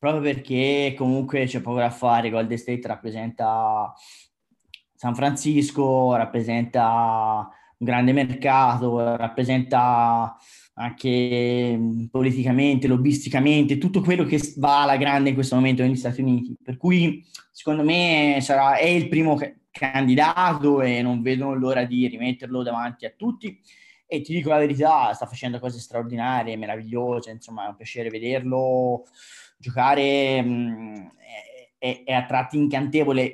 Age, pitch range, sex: 20-39, 125-150 Hz, male